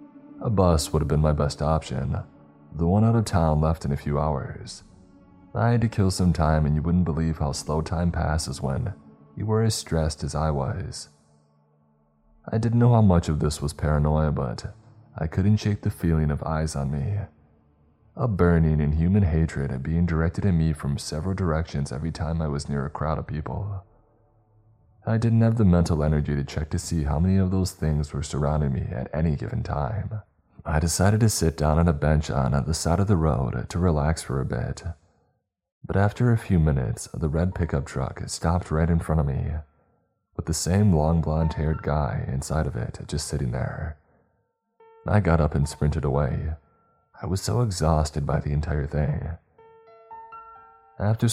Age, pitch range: 20-39, 75-100 Hz